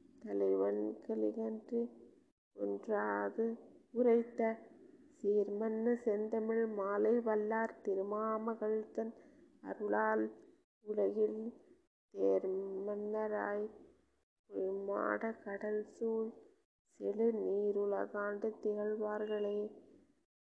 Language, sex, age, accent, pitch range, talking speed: Tamil, female, 20-39, native, 205-225 Hz, 55 wpm